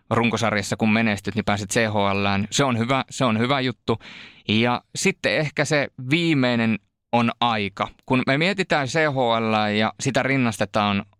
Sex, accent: male, native